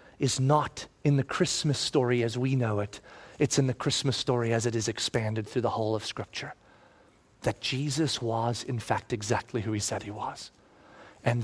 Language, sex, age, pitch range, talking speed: English, male, 30-49, 115-145 Hz, 190 wpm